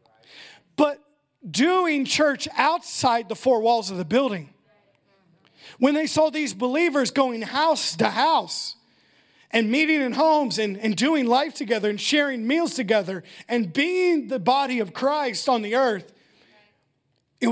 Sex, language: male, English